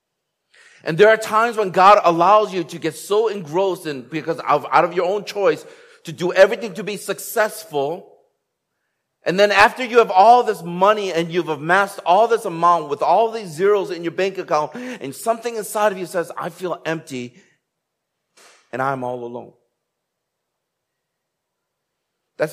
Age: 40-59